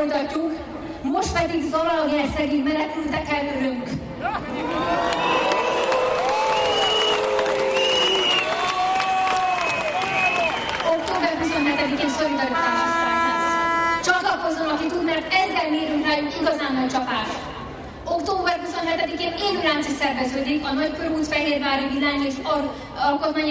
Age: 20-39